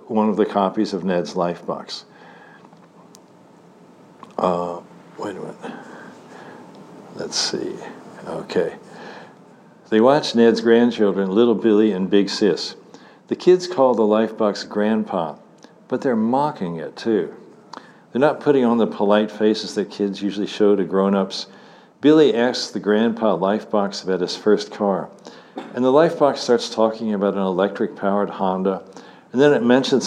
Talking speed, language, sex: 140 wpm, English, male